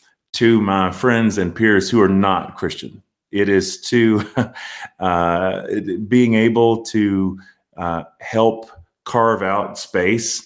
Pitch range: 85-110 Hz